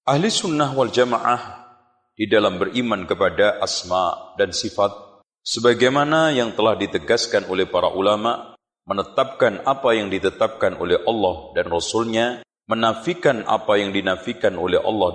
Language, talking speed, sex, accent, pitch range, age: Indonesian, 125 wpm, male, native, 100-135 Hz, 40-59